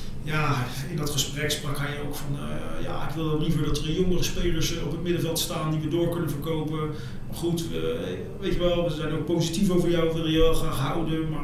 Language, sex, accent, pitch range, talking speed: Dutch, male, Dutch, 145-165 Hz, 235 wpm